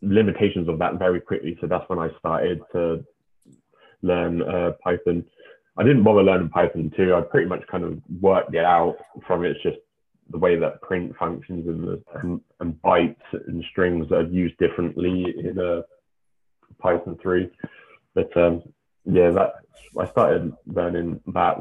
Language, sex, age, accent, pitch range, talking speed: English, male, 20-39, British, 85-95 Hz, 165 wpm